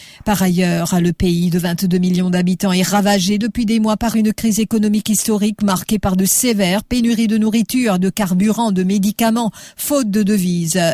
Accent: French